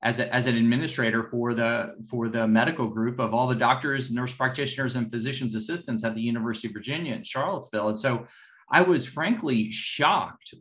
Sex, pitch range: male, 115-150 Hz